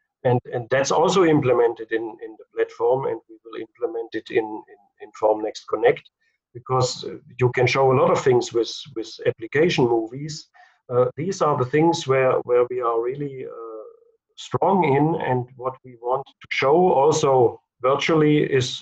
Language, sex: English, male